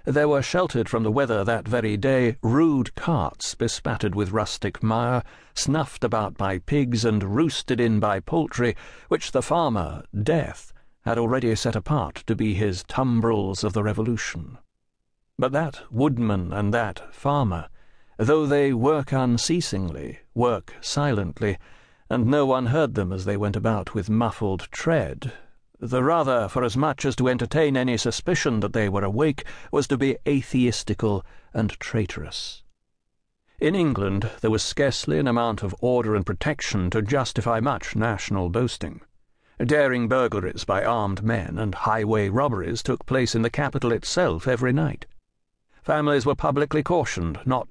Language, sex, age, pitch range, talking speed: English, male, 60-79, 105-140 Hz, 150 wpm